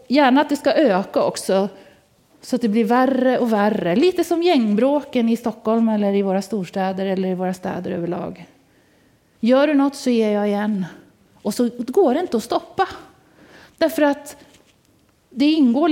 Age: 40-59